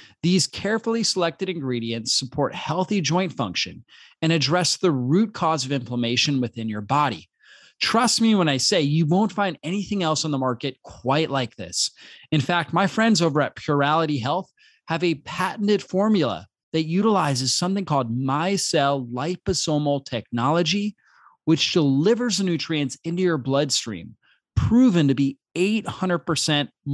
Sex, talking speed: male, 145 wpm